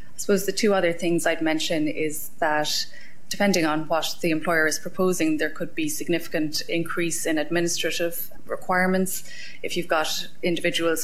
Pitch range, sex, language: 155-175 Hz, female, English